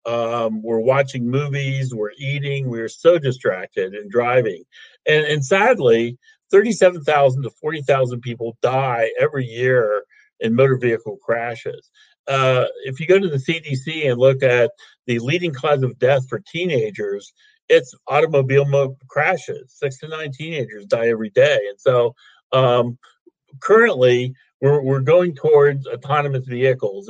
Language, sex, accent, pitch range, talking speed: English, male, American, 125-170 Hz, 135 wpm